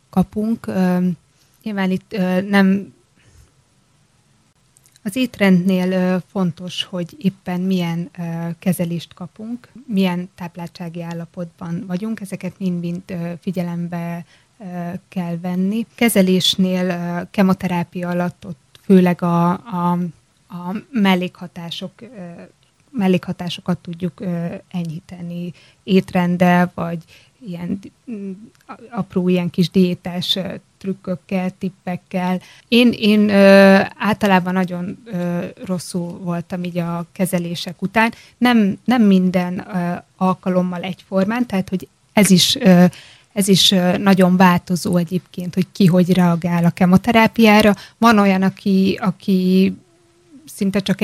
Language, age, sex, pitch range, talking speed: Hungarian, 20-39, female, 175-195 Hz, 100 wpm